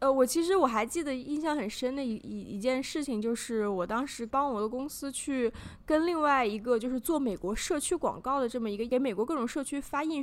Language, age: Chinese, 20-39